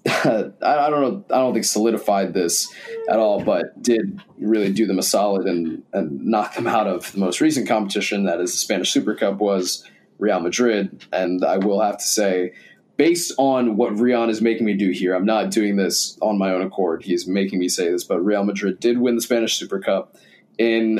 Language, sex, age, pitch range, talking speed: English, male, 20-39, 95-115 Hz, 215 wpm